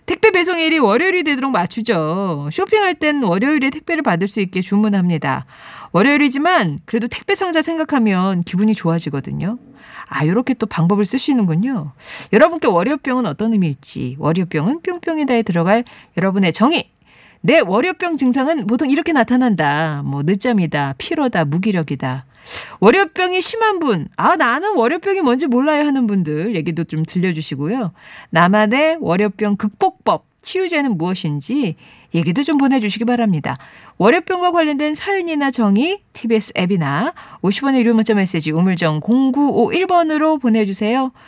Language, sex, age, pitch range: Korean, female, 40-59, 170-285 Hz